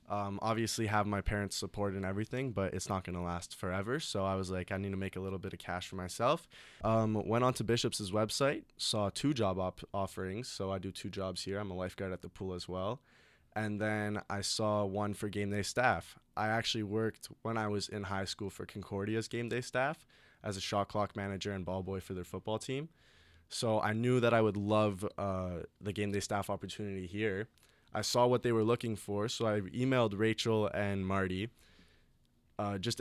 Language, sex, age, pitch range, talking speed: English, male, 20-39, 95-110 Hz, 215 wpm